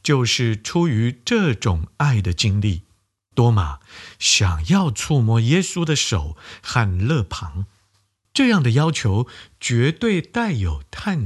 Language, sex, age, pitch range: Chinese, male, 50-69, 95-135 Hz